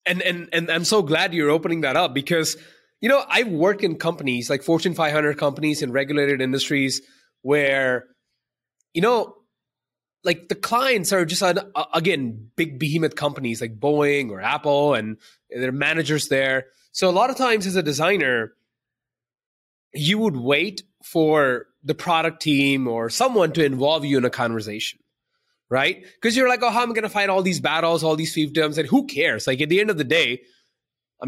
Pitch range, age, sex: 145-190 Hz, 20-39, male